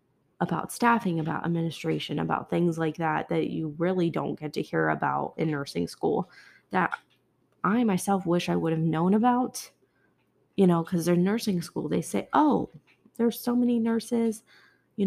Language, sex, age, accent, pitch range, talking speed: English, female, 20-39, American, 160-200 Hz, 170 wpm